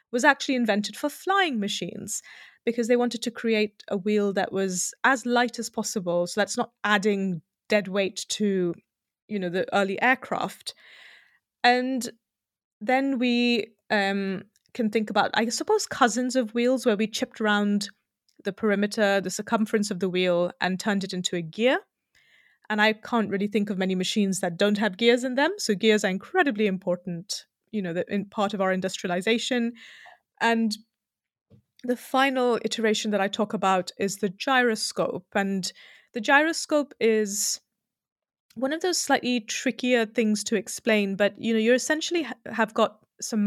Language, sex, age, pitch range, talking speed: English, female, 30-49, 200-245 Hz, 165 wpm